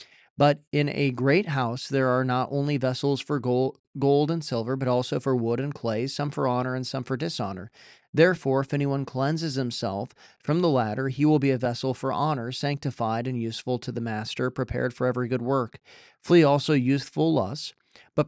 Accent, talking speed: American, 190 wpm